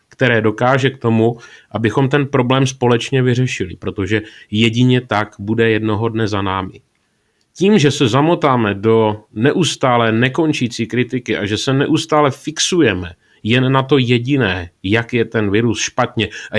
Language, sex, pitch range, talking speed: Czech, male, 105-130 Hz, 145 wpm